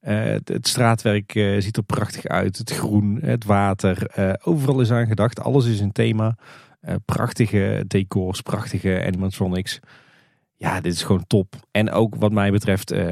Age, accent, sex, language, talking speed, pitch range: 40-59, Dutch, male, Dutch, 165 wpm, 95-115 Hz